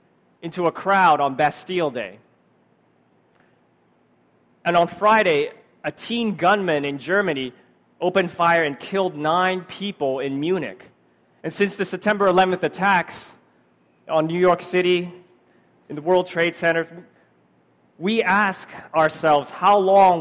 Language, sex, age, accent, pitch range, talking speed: English, male, 30-49, American, 145-200 Hz, 125 wpm